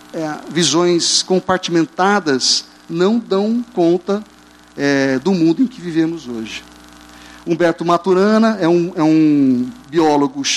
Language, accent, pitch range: Portuguese, Brazilian, 135-180 Hz